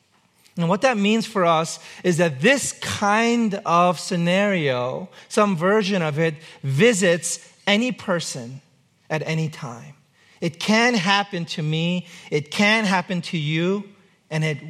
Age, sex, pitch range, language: 40-59, male, 155-195 Hz, English